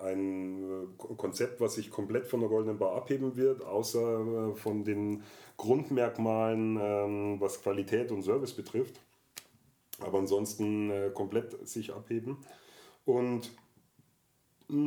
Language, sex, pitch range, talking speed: German, male, 105-125 Hz, 105 wpm